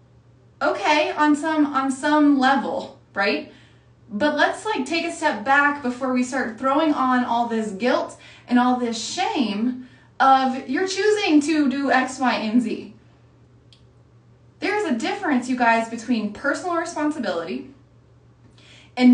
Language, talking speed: English, 140 wpm